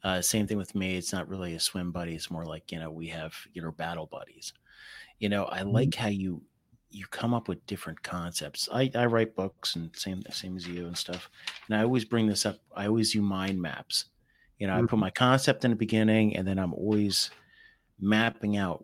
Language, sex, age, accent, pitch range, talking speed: English, male, 30-49, American, 90-110 Hz, 225 wpm